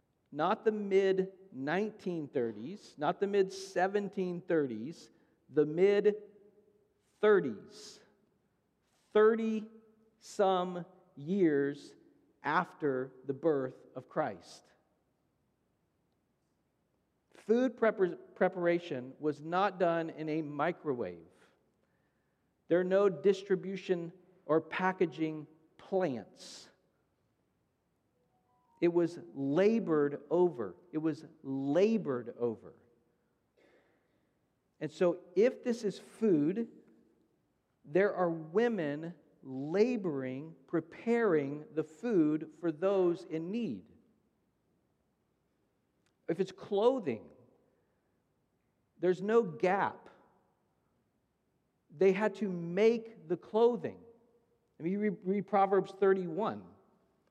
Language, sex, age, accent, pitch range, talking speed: English, male, 50-69, American, 160-210 Hz, 85 wpm